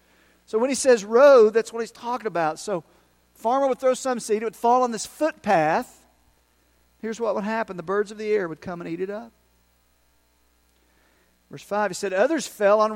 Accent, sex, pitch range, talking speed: American, male, 175-250 Hz, 205 wpm